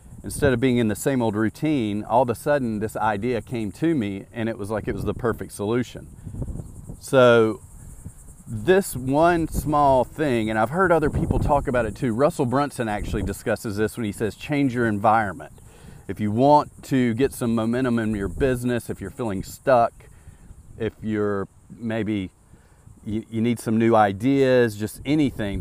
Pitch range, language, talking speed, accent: 105-125 Hz, English, 180 wpm, American